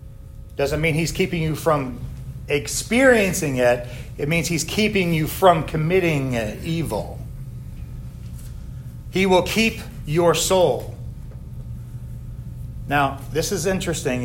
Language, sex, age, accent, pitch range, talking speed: English, male, 40-59, American, 120-150 Hz, 105 wpm